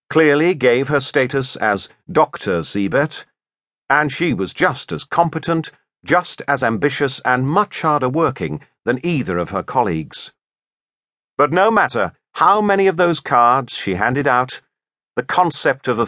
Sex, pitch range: male, 125-205 Hz